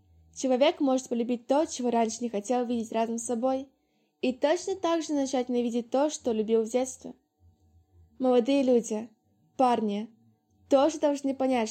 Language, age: Russian, 20-39